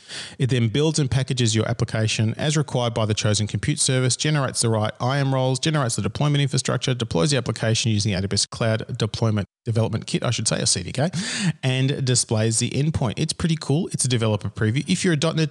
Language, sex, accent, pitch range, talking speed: English, male, Australian, 110-135 Hz, 200 wpm